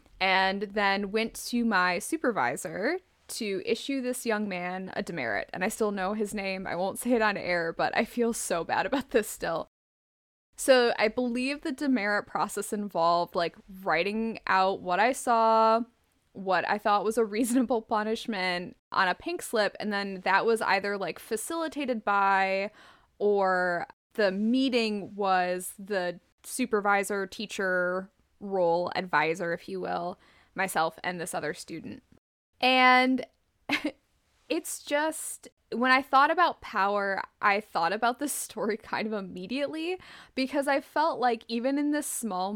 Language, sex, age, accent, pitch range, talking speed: English, female, 10-29, American, 190-250 Hz, 150 wpm